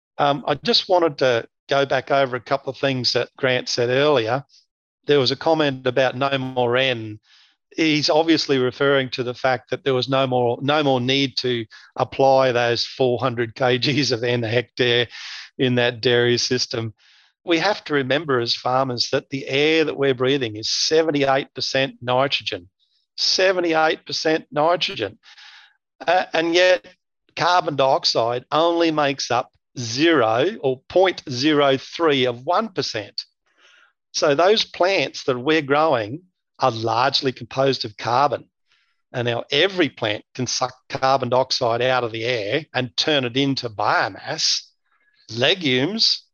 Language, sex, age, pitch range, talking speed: English, male, 50-69, 120-145 Hz, 140 wpm